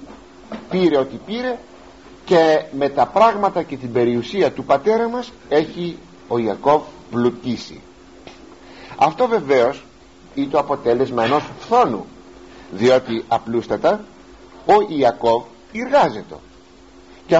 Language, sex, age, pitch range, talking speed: Greek, male, 50-69, 115-185 Hz, 105 wpm